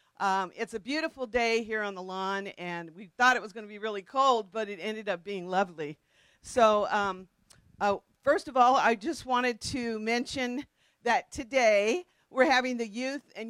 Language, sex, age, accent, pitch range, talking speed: English, female, 50-69, American, 205-255 Hz, 190 wpm